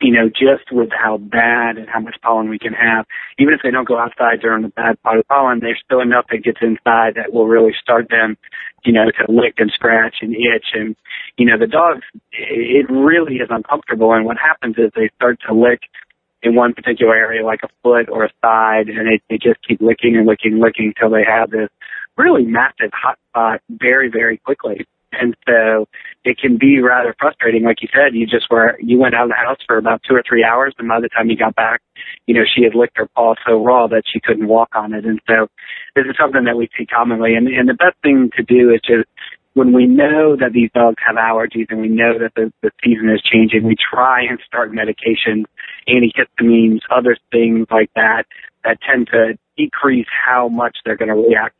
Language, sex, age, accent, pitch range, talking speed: English, male, 40-59, American, 110-125 Hz, 225 wpm